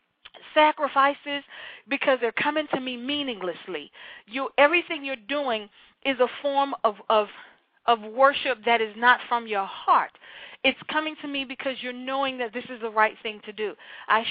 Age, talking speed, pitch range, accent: 40-59, 170 wpm, 215-270 Hz, American